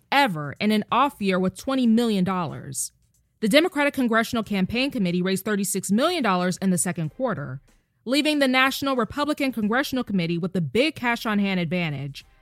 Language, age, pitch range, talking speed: English, 20-39, 180-260 Hz, 170 wpm